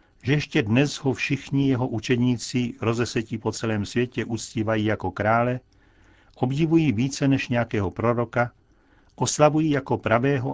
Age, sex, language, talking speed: 60-79, male, Czech, 125 wpm